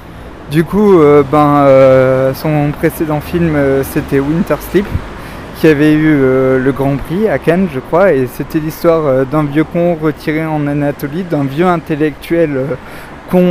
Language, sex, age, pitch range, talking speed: French, male, 20-39, 130-155 Hz, 170 wpm